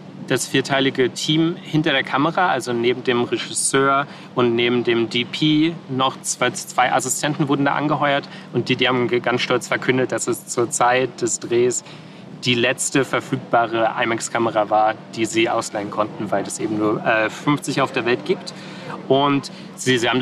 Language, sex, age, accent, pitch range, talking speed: German, male, 30-49, German, 130-180 Hz, 165 wpm